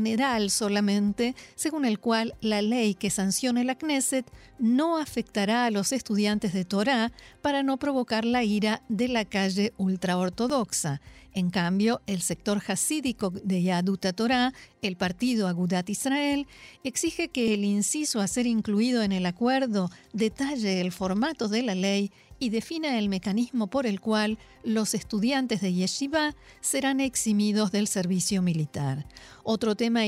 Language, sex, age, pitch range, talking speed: Spanish, female, 50-69, 195-250 Hz, 145 wpm